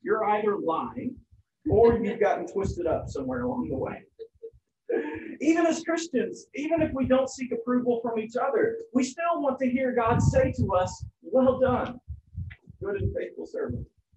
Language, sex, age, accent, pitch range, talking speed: English, male, 40-59, American, 175-260 Hz, 165 wpm